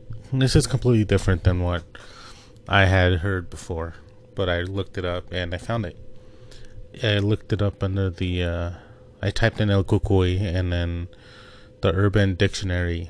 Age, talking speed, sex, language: 30-49, 165 wpm, male, English